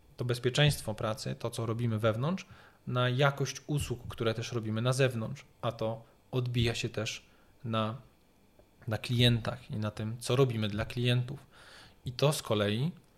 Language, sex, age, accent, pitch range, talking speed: Polish, male, 20-39, native, 110-125 Hz, 155 wpm